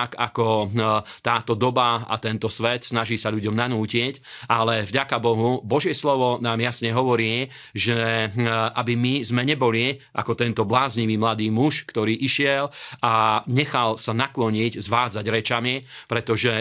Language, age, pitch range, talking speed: Slovak, 40-59, 115-130 Hz, 135 wpm